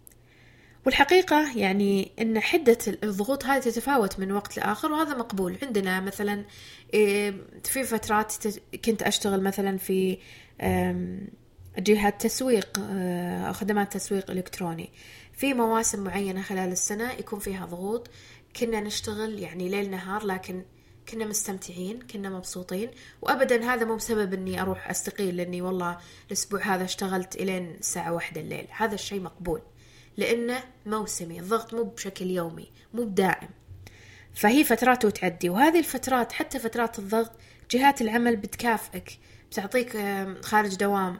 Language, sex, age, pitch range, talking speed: Arabic, female, 20-39, 185-230 Hz, 125 wpm